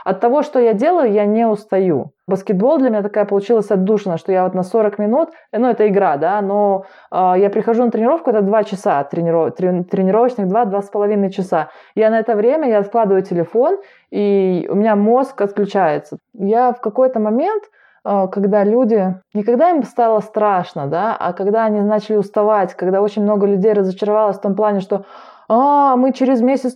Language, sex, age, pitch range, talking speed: Russian, female, 20-39, 205-250 Hz, 175 wpm